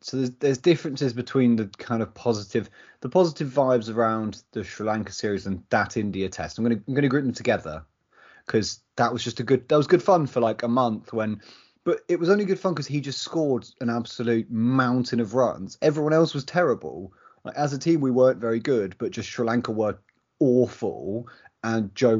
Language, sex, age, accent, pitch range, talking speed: English, male, 20-39, British, 105-135 Hz, 215 wpm